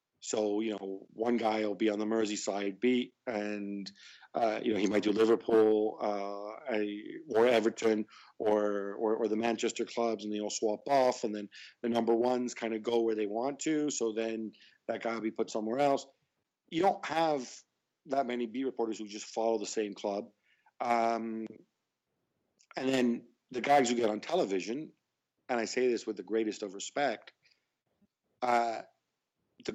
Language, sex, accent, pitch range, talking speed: English, male, American, 105-120 Hz, 175 wpm